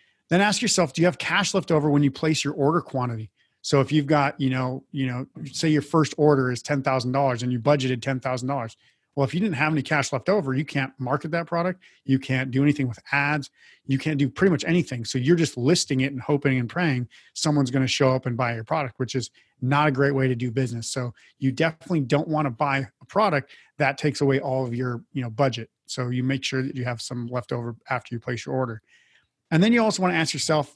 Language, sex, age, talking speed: English, male, 30-49, 250 wpm